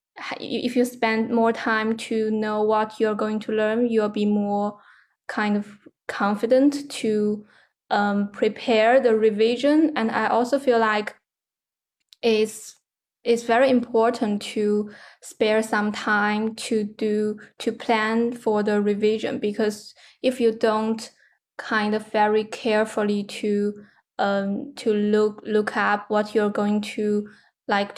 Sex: female